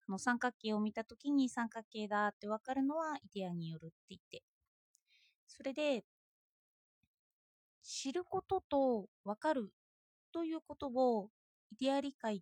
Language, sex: Japanese, female